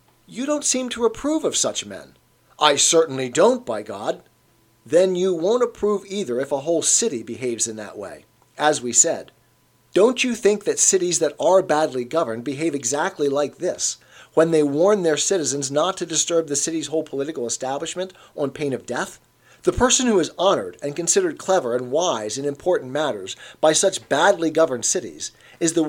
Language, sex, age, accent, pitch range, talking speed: English, male, 40-59, American, 145-205 Hz, 185 wpm